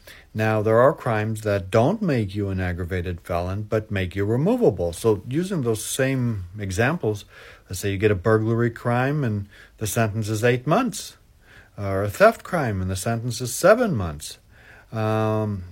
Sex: male